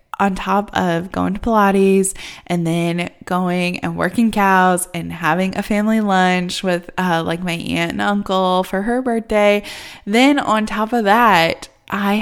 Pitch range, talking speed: 175-215 Hz, 160 wpm